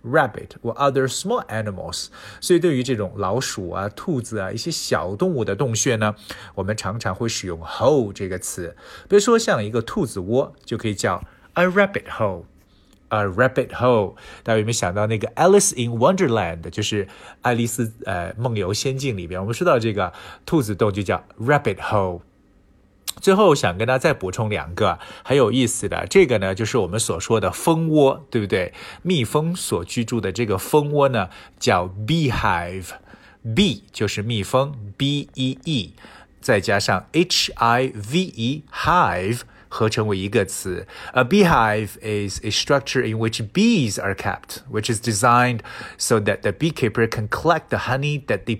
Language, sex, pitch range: Chinese, male, 105-140 Hz